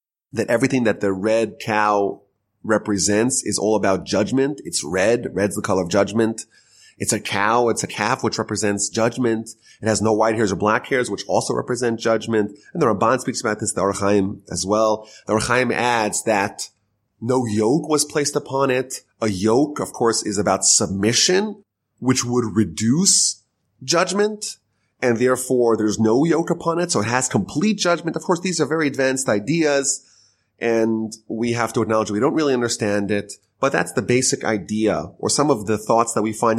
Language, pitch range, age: English, 105-135 Hz, 30-49